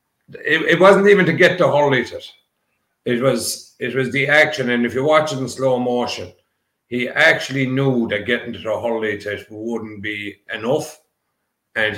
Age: 60-79